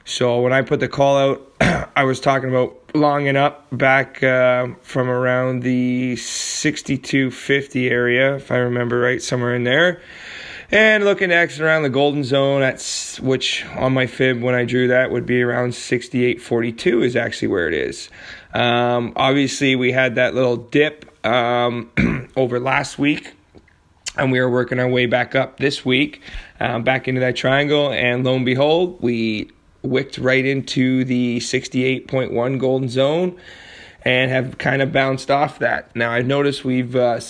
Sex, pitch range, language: male, 125-135 Hz, English